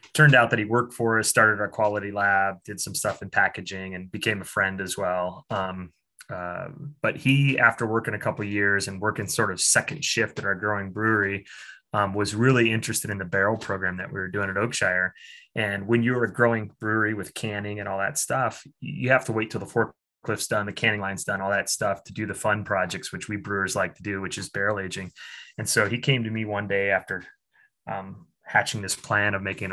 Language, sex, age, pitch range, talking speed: English, male, 20-39, 95-115 Hz, 230 wpm